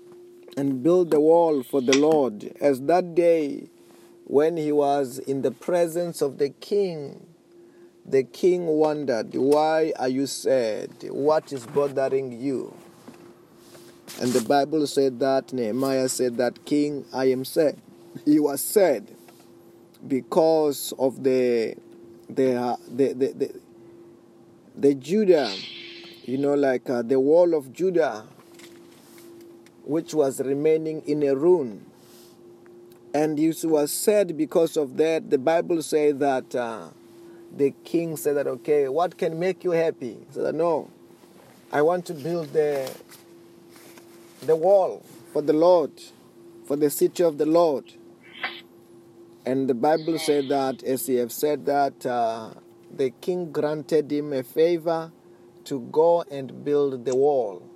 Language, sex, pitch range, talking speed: English, male, 130-170 Hz, 140 wpm